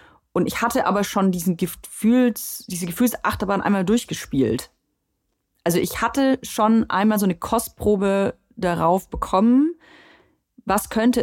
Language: German